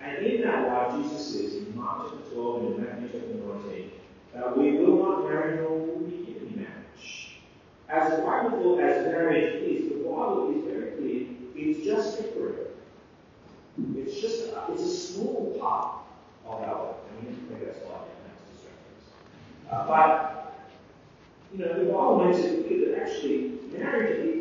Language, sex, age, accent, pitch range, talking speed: English, male, 40-59, American, 260-430 Hz, 165 wpm